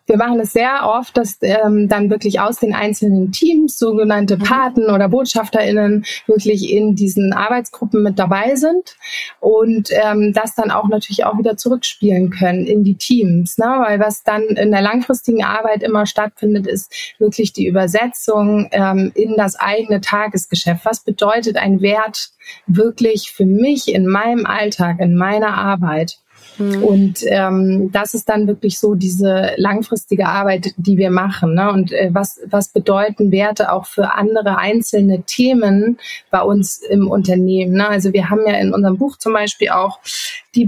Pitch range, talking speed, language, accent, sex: 195-225 Hz, 160 wpm, German, German, female